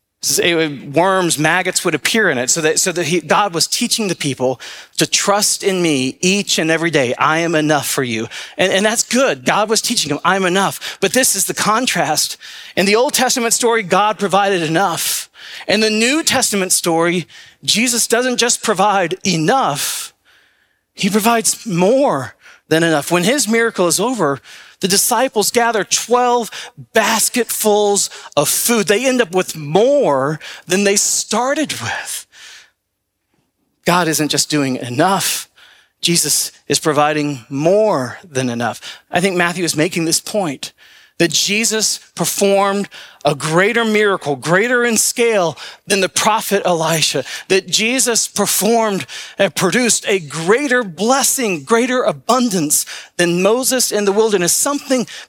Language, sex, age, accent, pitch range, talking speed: English, male, 40-59, American, 155-220 Hz, 145 wpm